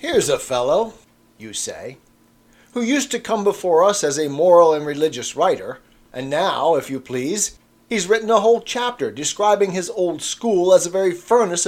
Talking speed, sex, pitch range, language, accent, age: 180 wpm, male, 130-200 Hz, English, American, 40-59